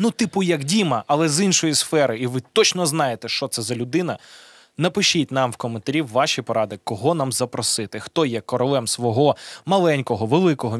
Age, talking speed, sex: 20-39, 180 wpm, male